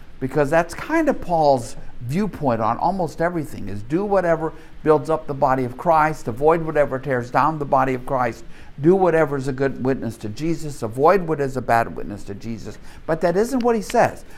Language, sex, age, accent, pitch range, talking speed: English, male, 50-69, American, 110-150 Hz, 200 wpm